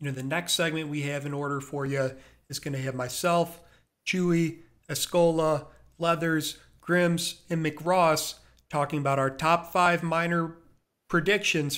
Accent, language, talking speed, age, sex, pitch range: American, English, 150 wpm, 40-59, male, 145-175 Hz